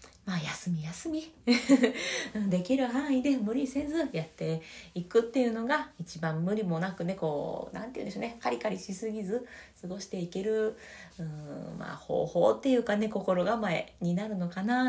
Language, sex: Japanese, female